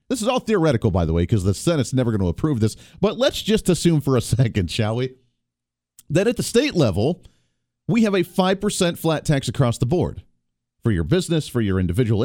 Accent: American